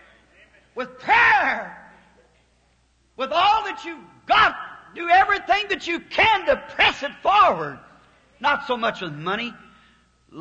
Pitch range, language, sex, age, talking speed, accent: 245-310 Hz, English, male, 50-69, 125 wpm, American